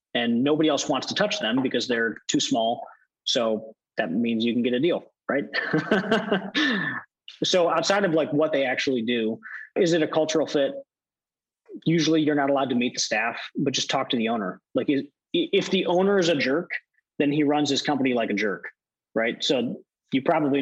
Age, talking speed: 30-49, 190 wpm